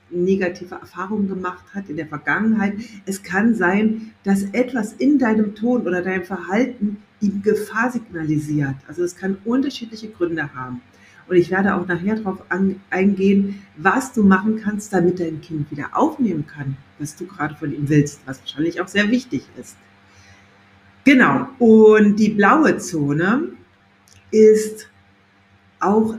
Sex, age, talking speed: female, 60-79, 145 wpm